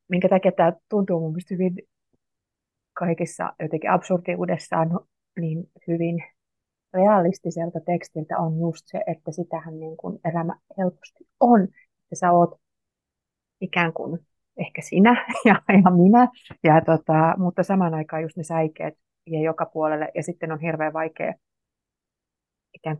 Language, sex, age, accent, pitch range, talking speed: Finnish, female, 30-49, native, 160-185 Hz, 130 wpm